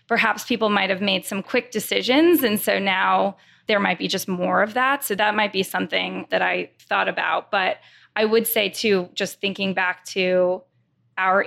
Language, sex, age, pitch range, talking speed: English, female, 20-39, 190-225 Hz, 190 wpm